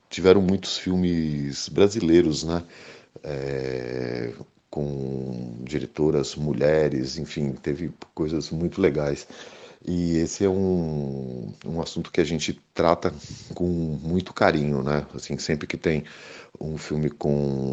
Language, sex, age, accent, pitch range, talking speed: Portuguese, male, 50-69, Brazilian, 70-80 Hz, 110 wpm